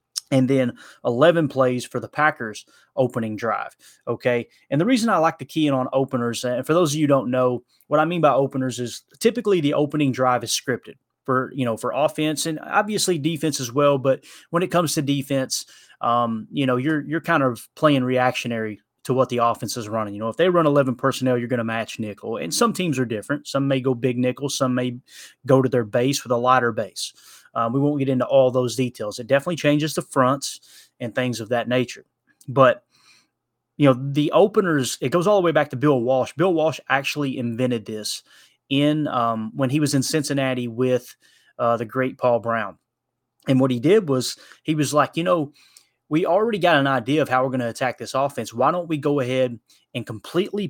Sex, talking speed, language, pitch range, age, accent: male, 215 wpm, English, 125-150 Hz, 20-39, American